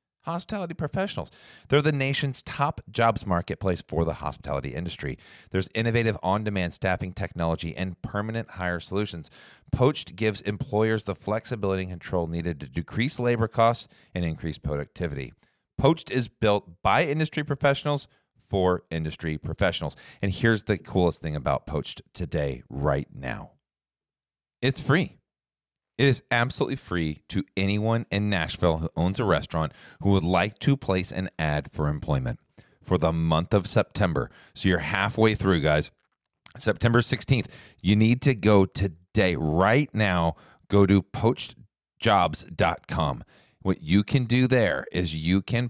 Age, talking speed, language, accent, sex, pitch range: 40-59, 140 wpm, English, American, male, 85-115 Hz